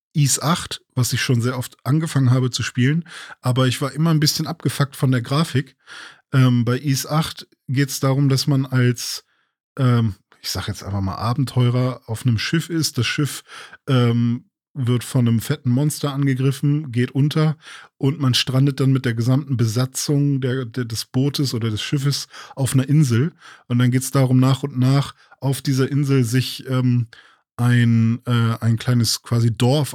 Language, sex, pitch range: German, male, 120-145 Hz